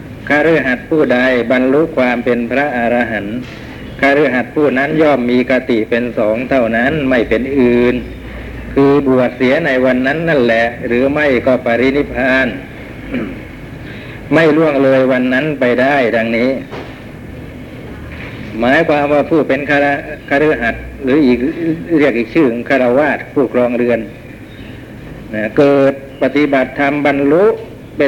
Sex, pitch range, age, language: male, 120-140 Hz, 60-79, Thai